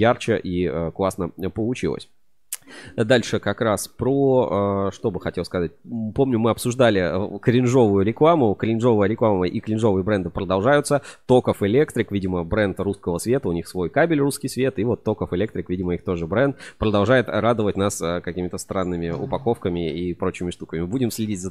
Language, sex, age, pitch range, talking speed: Russian, male, 20-39, 90-115 Hz, 155 wpm